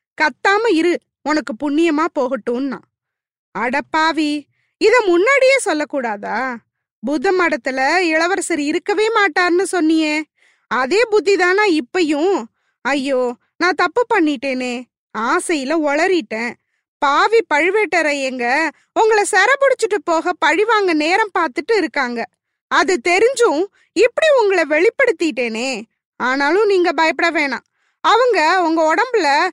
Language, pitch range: Tamil, 300-410 Hz